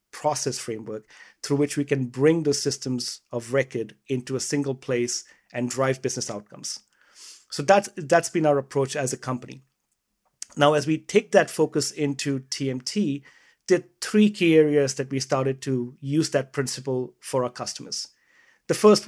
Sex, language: male, English